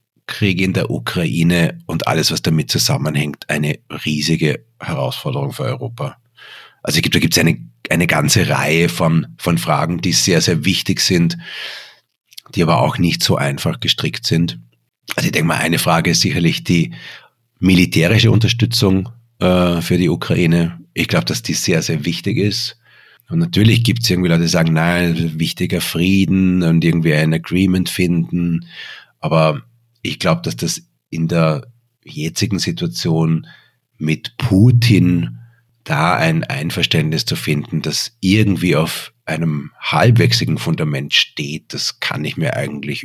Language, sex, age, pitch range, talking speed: German, male, 40-59, 80-115 Hz, 145 wpm